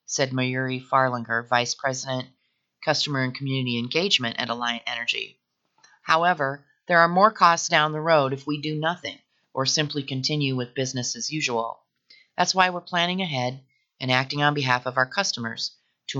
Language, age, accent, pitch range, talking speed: English, 30-49, American, 125-150 Hz, 165 wpm